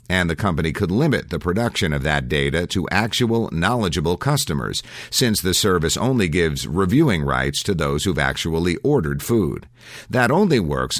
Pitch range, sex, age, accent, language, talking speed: 80-110 Hz, male, 50-69, American, English, 165 wpm